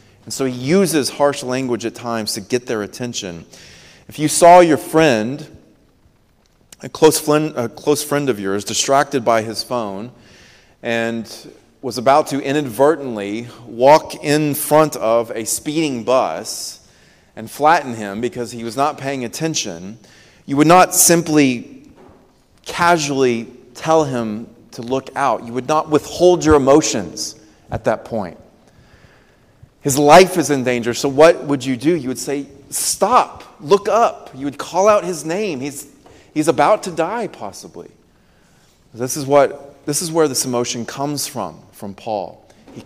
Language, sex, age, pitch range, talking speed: English, male, 30-49, 115-150 Hz, 150 wpm